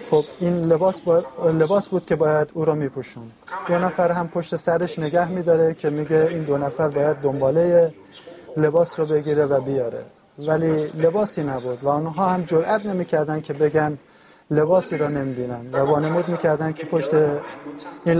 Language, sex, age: Persian, male, 30-49